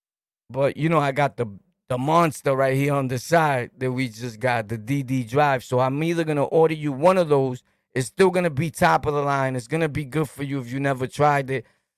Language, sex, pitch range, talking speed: English, male, 135-170 Hz, 255 wpm